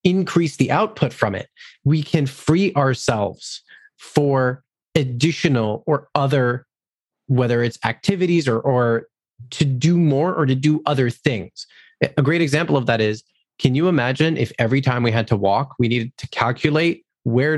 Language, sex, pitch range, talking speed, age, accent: English, male, 130-165 Hz, 160 wpm, 30-49, American